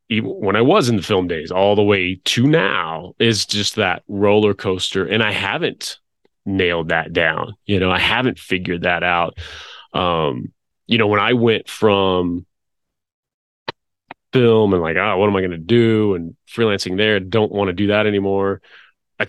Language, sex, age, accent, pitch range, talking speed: English, male, 30-49, American, 95-110 Hz, 175 wpm